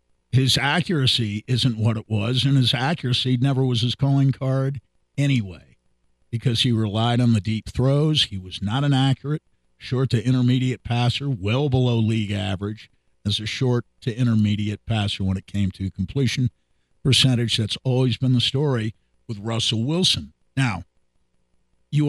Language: English